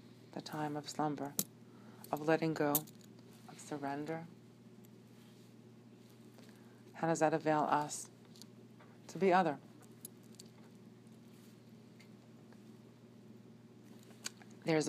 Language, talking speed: English, 75 wpm